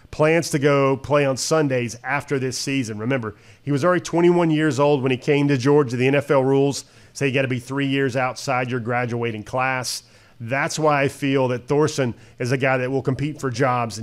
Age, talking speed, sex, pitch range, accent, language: 40-59, 210 wpm, male, 125-150 Hz, American, English